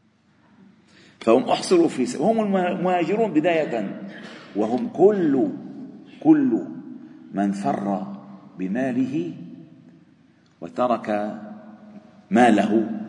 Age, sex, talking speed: 50-69, male, 70 wpm